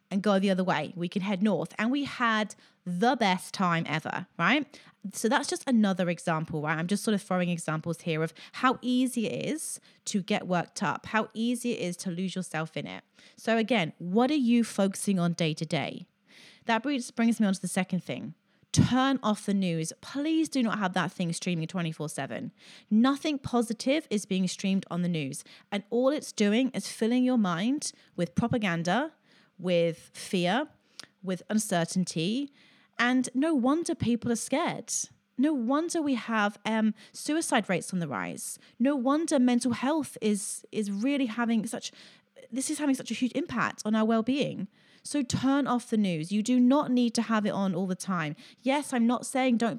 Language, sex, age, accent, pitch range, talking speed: English, female, 30-49, British, 185-250 Hz, 190 wpm